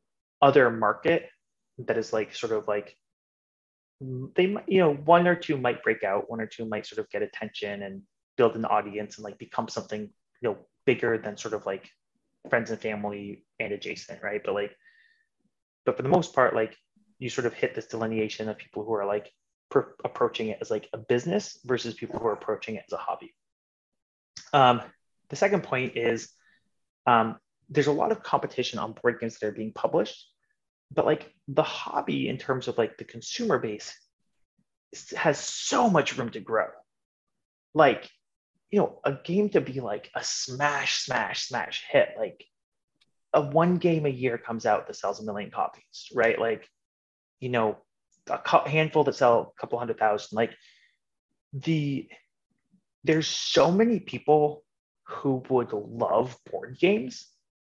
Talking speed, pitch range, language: 175 wpm, 110-160 Hz, English